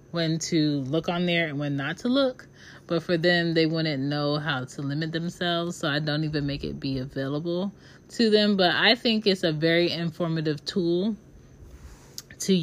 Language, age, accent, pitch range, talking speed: English, 30-49, American, 150-175 Hz, 185 wpm